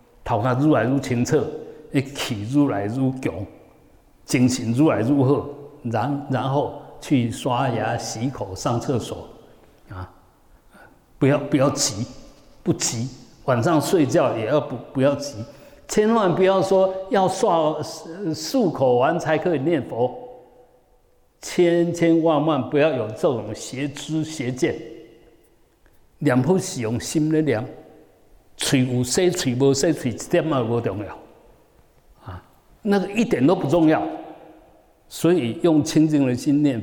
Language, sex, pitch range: Chinese, male, 120-155 Hz